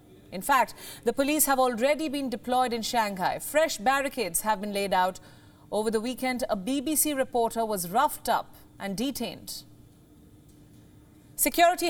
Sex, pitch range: female, 205-285 Hz